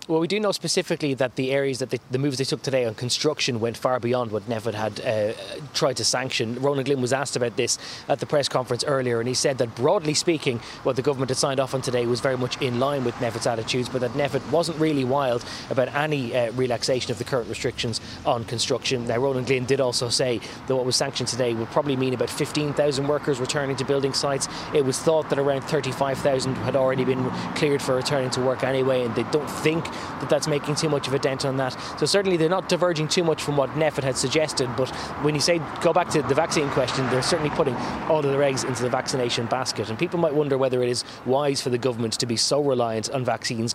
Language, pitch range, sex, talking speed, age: English, 125-150 Hz, male, 240 wpm, 20-39